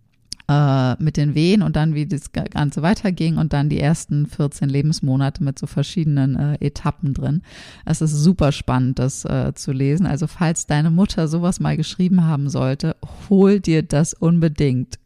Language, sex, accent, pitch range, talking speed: German, female, German, 145-175 Hz, 165 wpm